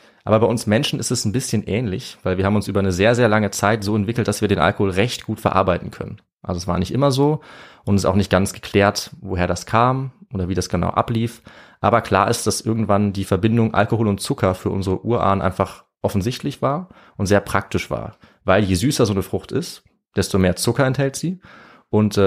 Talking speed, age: 225 wpm, 30-49